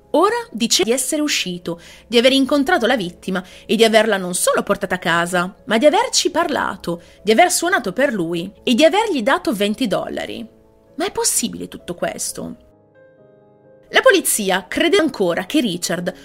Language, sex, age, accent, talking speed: Italian, female, 30-49, native, 165 wpm